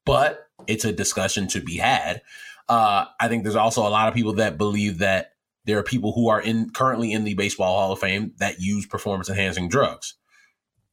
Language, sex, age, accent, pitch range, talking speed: English, male, 20-39, American, 95-120 Hz, 205 wpm